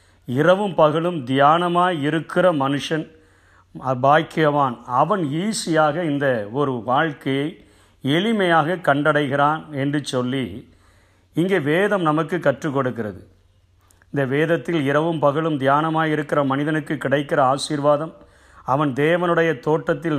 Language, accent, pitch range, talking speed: Tamil, native, 135-170 Hz, 90 wpm